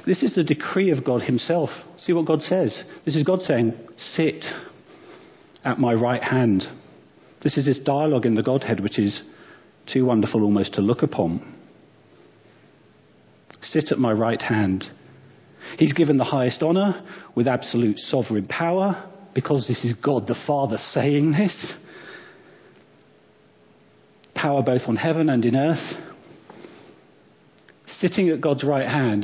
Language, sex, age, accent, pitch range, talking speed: English, male, 40-59, British, 115-155 Hz, 140 wpm